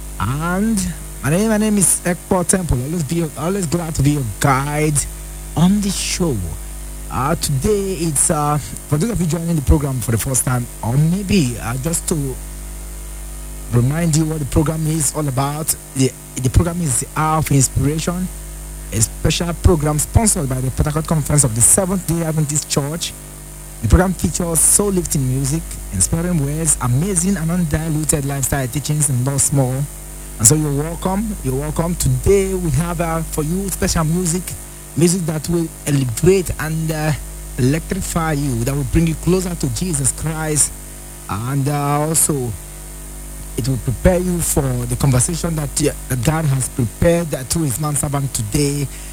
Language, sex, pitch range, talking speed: English, male, 135-170 Hz, 160 wpm